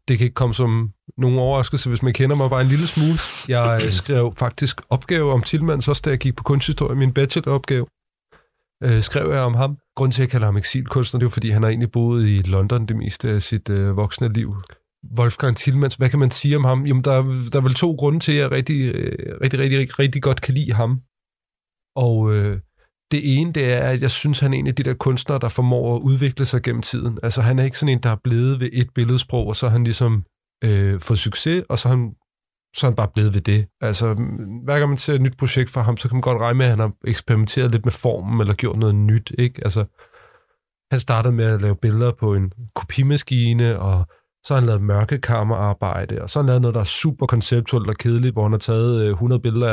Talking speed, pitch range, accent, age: 235 wpm, 110-135 Hz, native, 30-49